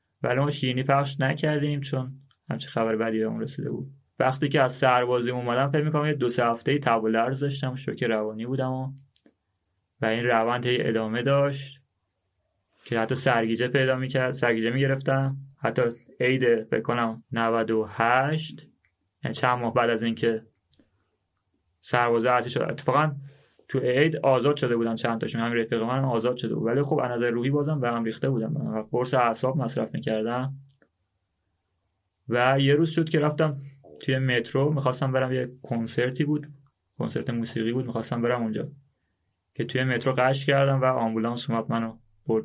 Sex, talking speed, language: male, 155 wpm, Persian